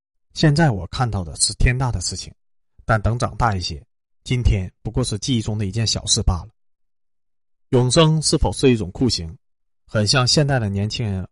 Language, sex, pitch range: Chinese, male, 95-125 Hz